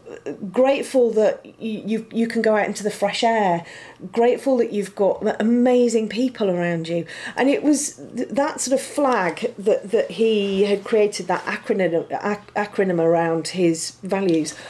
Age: 40-59